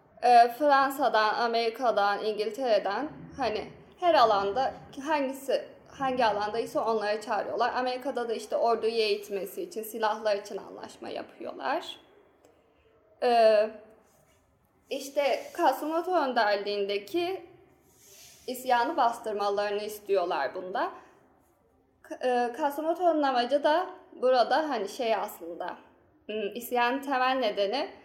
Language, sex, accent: Turkish, female, native